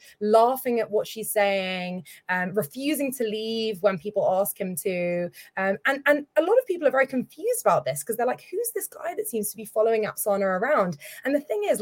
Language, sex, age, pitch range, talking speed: English, female, 20-39, 180-260 Hz, 220 wpm